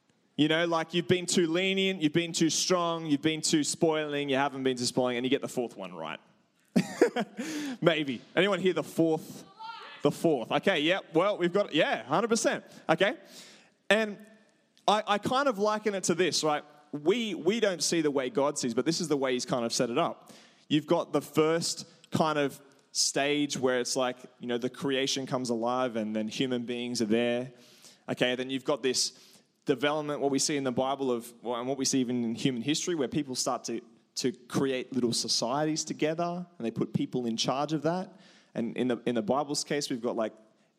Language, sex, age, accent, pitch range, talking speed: English, male, 20-39, Australian, 130-180 Hz, 210 wpm